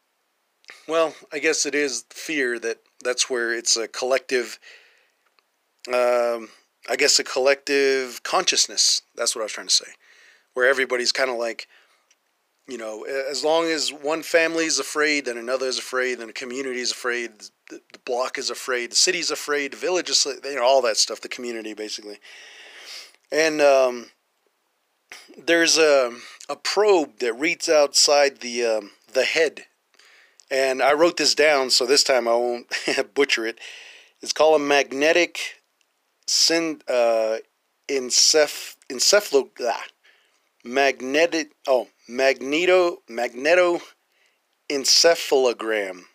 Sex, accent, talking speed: male, American, 135 wpm